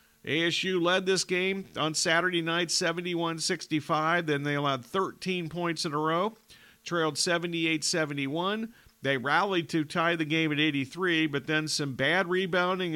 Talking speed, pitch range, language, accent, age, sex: 145 wpm, 145-175 Hz, English, American, 50-69, male